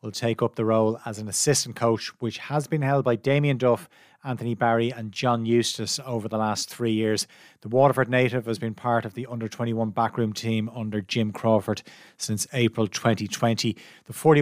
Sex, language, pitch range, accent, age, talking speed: male, English, 110-130 Hz, Irish, 30-49, 180 wpm